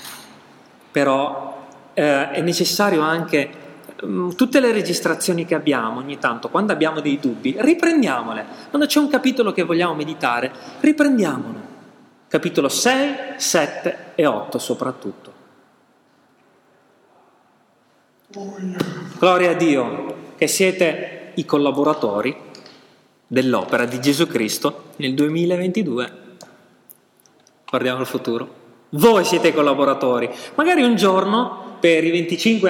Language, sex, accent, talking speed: Italian, male, native, 105 wpm